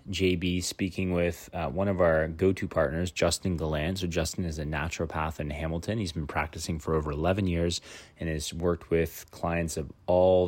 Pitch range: 85-100 Hz